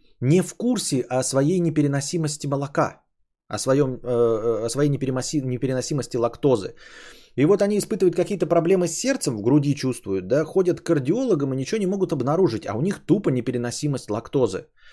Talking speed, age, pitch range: 160 wpm, 20-39, 110-165 Hz